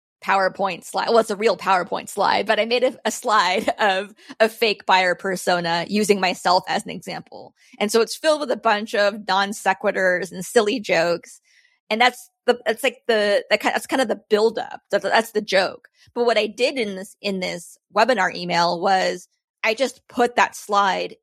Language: English